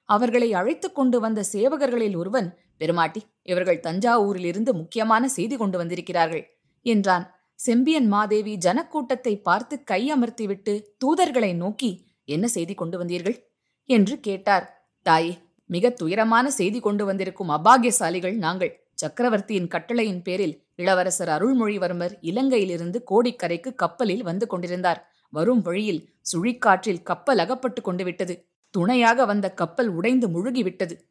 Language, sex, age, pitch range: Tamil, female, 20-39, 180-235 Hz